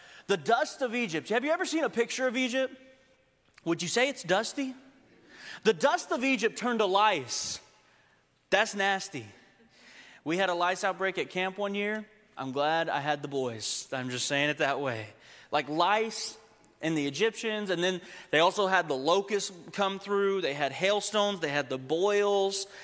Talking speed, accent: 180 wpm, American